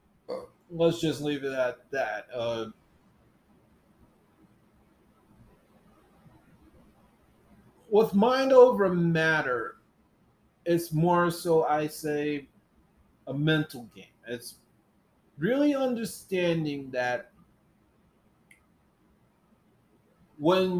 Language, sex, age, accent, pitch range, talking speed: English, male, 30-49, American, 145-190 Hz, 70 wpm